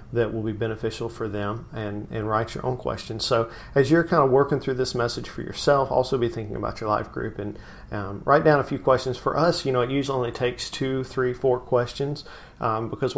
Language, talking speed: English, 230 wpm